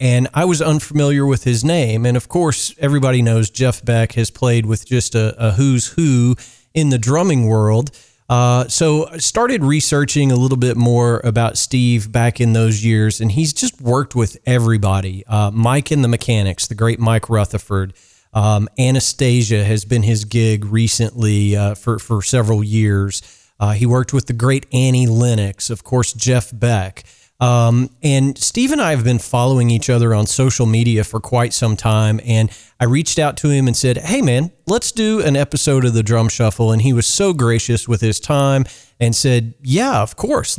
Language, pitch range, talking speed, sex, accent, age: English, 110-130 Hz, 190 wpm, male, American, 40-59